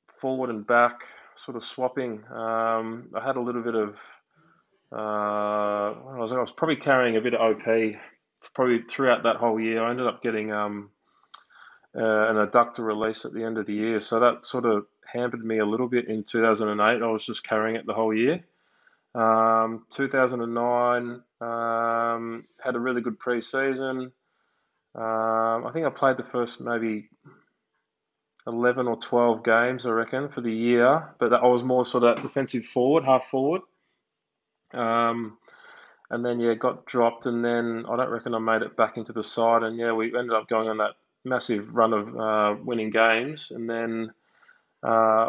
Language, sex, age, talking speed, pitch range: English, male, 20-39, 175 wpm, 110-120 Hz